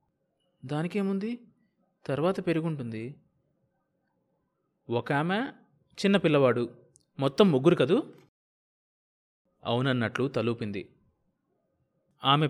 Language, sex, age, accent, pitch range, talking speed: Telugu, male, 20-39, native, 125-180 Hz, 60 wpm